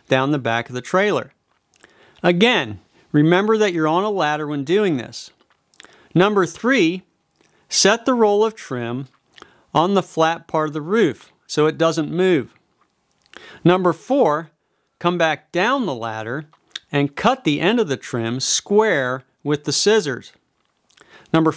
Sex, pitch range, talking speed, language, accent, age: male, 135-185 Hz, 145 wpm, English, American, 50-69